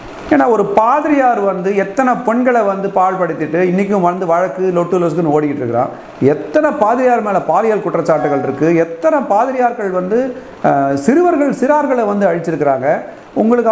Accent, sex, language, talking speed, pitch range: native, male, Tamil, 130 wpm, 195-250 Hz